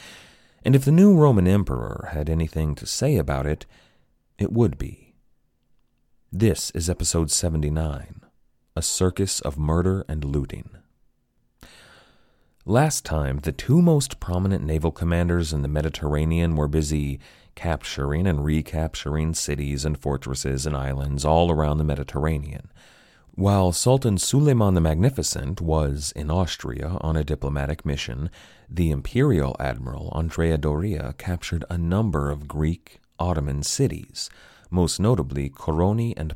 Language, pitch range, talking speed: English, 70-90 Hz, 130 wpm